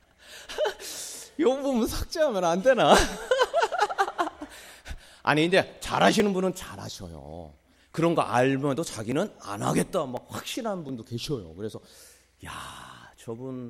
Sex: male